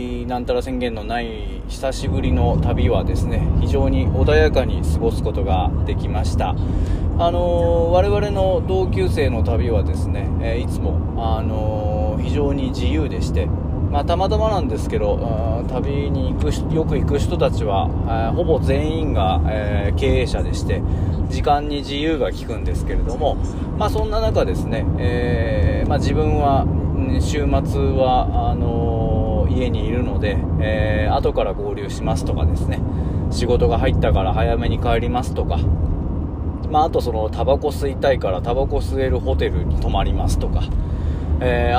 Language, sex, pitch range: Japanese, male, 80-95 Hz